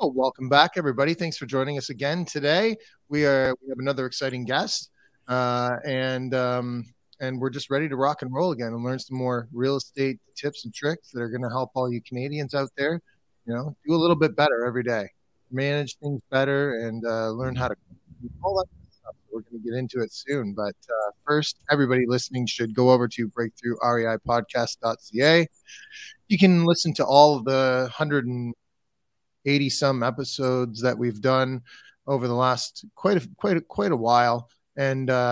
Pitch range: 120-145 Hz